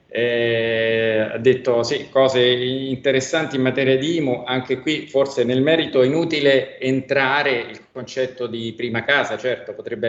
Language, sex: Italian, male